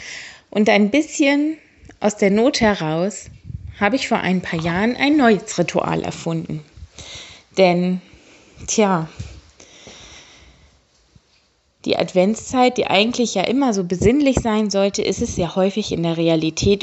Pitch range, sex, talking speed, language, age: 175-220 Hz, female, 130 wpm, German, 20-39